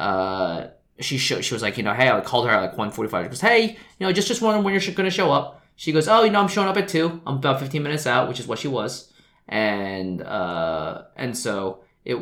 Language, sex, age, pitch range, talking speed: English, male, 20-39, 100-165 Hz, 260 wpm